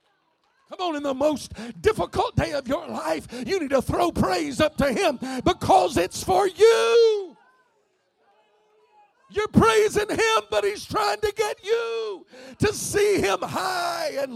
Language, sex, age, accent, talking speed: English, male, 50-69, American, 150 wpm